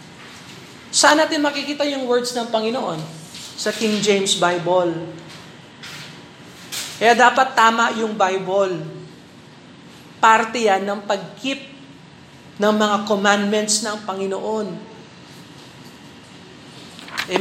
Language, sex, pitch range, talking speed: Filipino, male, 200-290 Hz, 90 wpm